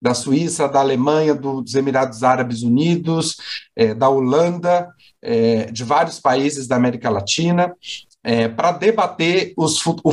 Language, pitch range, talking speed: Portuguese, 120-155 Hz, 140 wpm